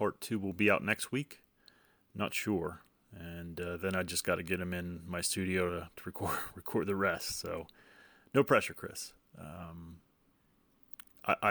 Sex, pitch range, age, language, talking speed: male, 85-95 Hz, 30-49, English, 170 wpm